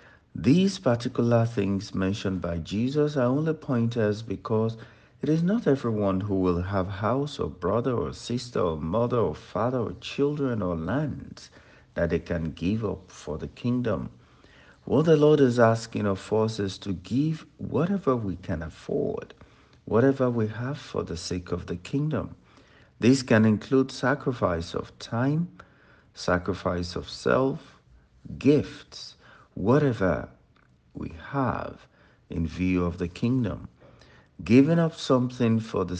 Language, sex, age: English, male, 60-79